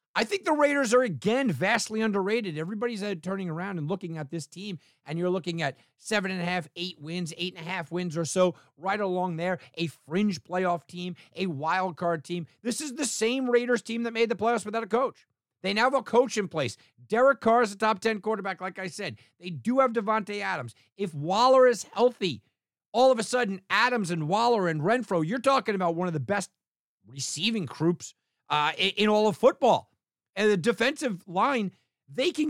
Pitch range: 140-220 Hz